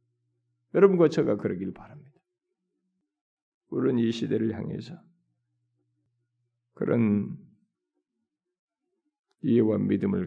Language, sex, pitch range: Korean, male, 115-155 Hz